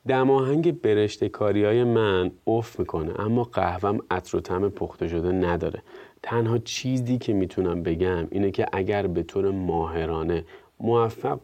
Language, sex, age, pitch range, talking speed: Persian, male, 30-49, 95-130 Hz, 140 wpm